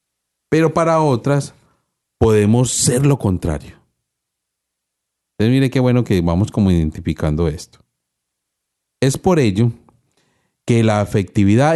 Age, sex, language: 40-59, male, Spanish